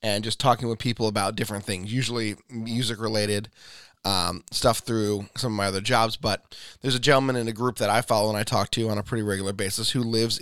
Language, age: English, 20-39